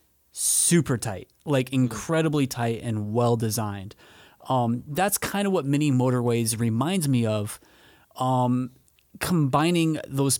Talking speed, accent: 120 wpm, American